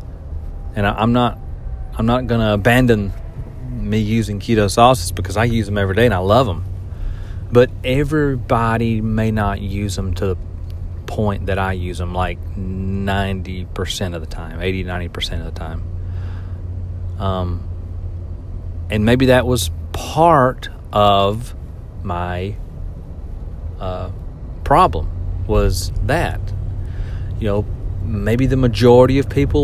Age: 30-49